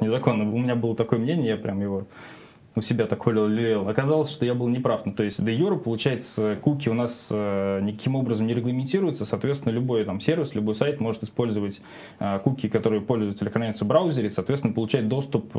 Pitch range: 110-130 Hz